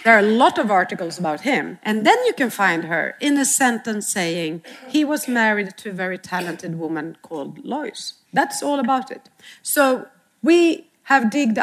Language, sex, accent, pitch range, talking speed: English, female, Swedish, 205-265 Hz, 185 wpm